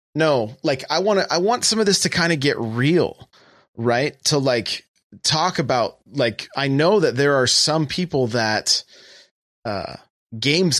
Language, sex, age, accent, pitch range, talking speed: English, male, 30-49, American, 115-150 Hz, 170 wpm